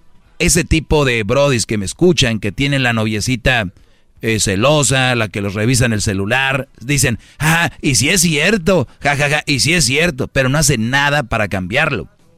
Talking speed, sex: 195 wpm, male